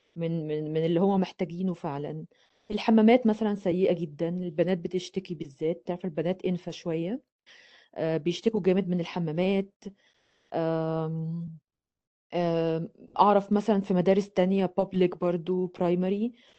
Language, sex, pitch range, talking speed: Arabic, female, 175-210 Hz, 115 wpm